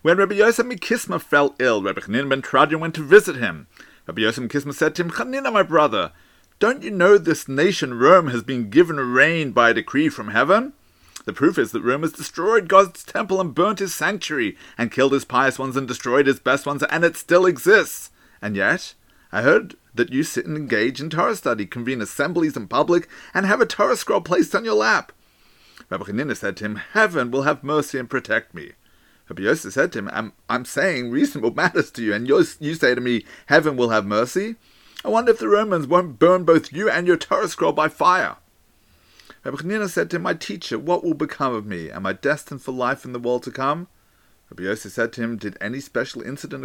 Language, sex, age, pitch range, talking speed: English, male, 30-49, 130-190 Hz, 215 wpm